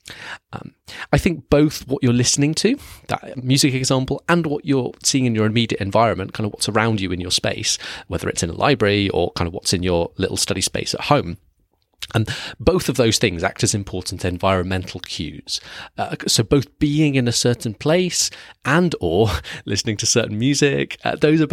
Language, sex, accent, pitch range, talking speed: English, male, British, 95-125 Hz, 195 wpm